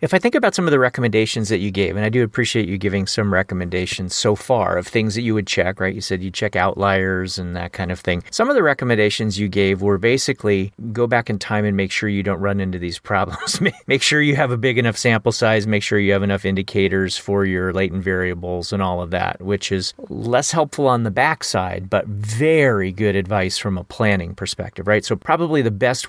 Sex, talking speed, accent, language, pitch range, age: male, 235 wpm, American, English, 95-130 Hz, 40-59